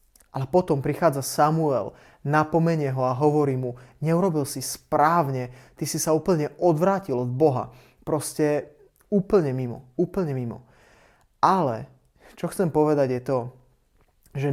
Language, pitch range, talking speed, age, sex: Slovak, 135-160 Hz, 130 wpm, 20-39, male